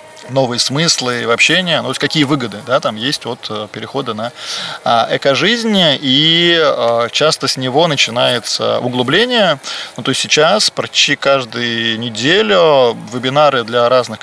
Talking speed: 125 wpm